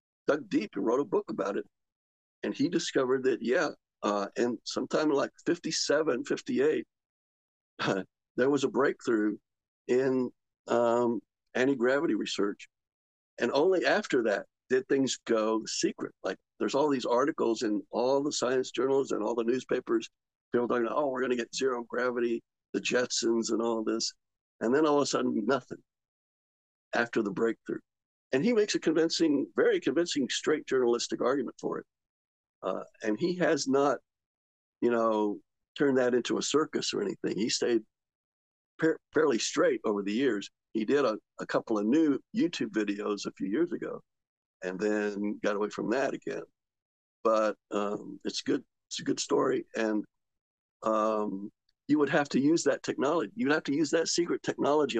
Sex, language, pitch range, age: male, English, 110-150 Hz, 60-79